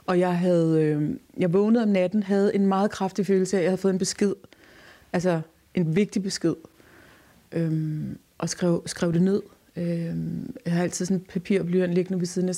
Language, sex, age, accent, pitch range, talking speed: Danish, female, 30-49, native, 170-205 Hz, 195 wpm